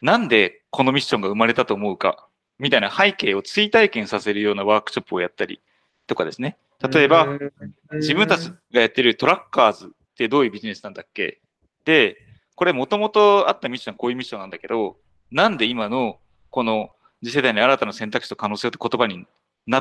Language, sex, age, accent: Japanese, male, 30-49, native